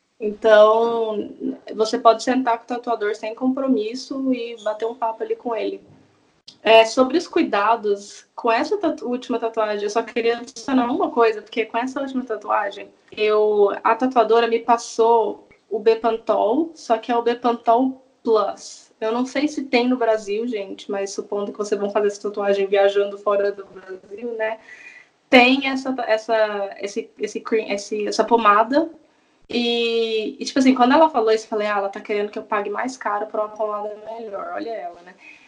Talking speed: 165 wpm